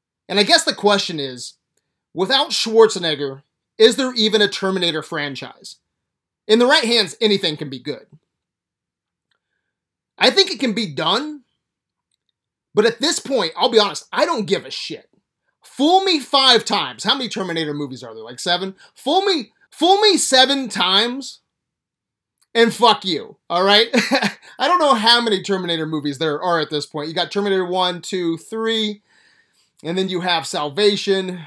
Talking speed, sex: 165 wpm, male